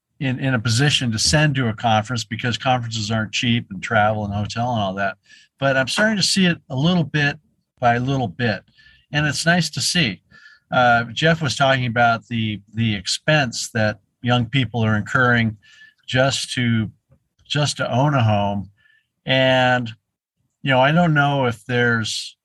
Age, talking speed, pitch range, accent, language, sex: 50-69, 175 wpm, 110-135 Hz, American, English, male